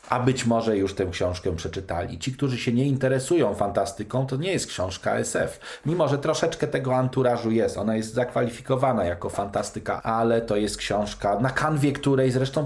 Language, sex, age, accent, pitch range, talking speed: Polish, male, 40-59, native, 105-135 Hz, 175 wpm